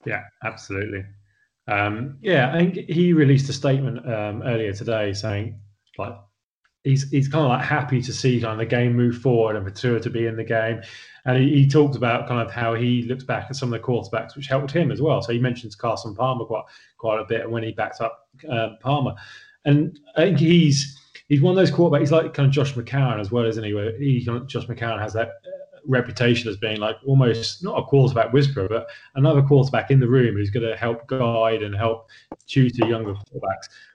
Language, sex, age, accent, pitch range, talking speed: English, male, 20-39, British, 110-135 Hz, 215 wpm